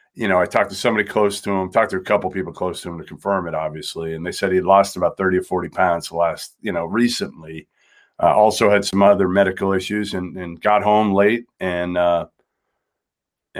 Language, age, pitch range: English, 40-59, 95-110 Hz